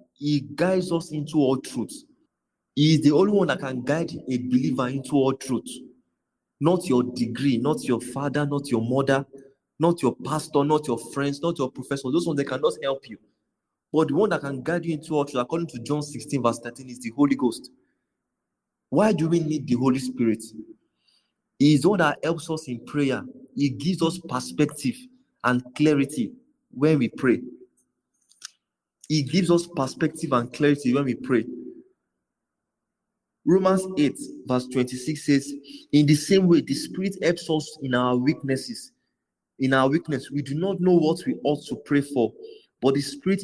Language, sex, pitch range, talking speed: English, male, 130-170 Hz, 180 wpm